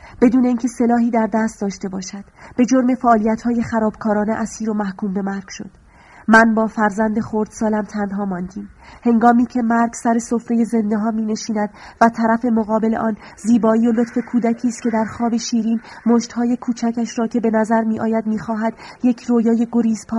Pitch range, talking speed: 210-235 Hz, 160 wpm